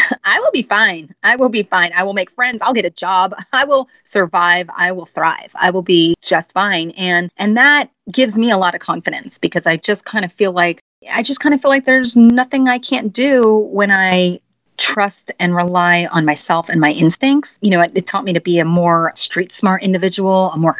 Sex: female